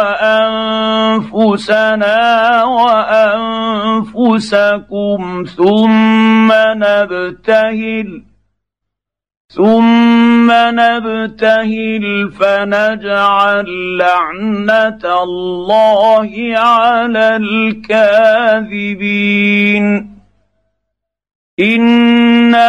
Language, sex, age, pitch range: Arabic, male, 50-69, 200-220 Hz